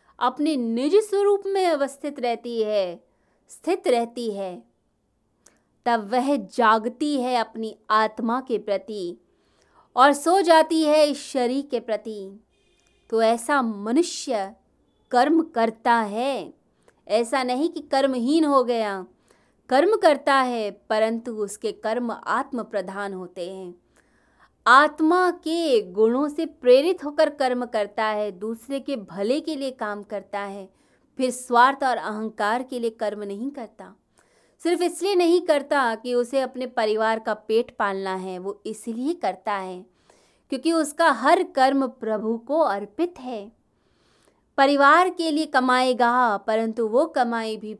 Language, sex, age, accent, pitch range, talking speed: Hindi, female, 20-39, native, 215-285 Hz, 135 wpm